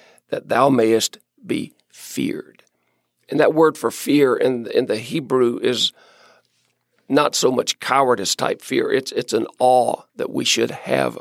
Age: 50-69